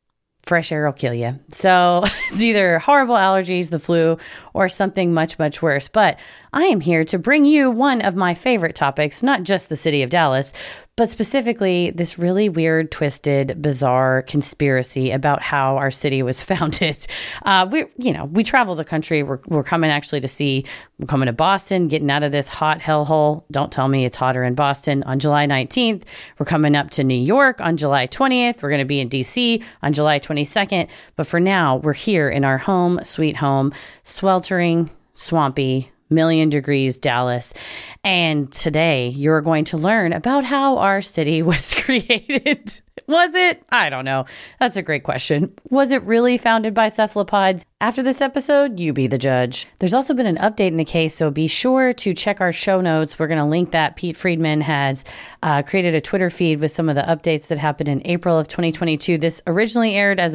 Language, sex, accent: English, female, American